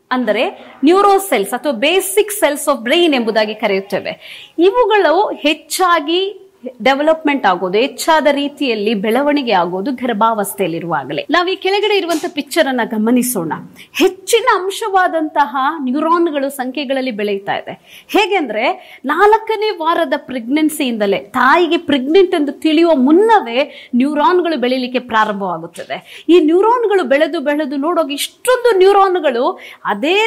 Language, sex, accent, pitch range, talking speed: Kannada, female, native, 250-370 Hz, 105 wpm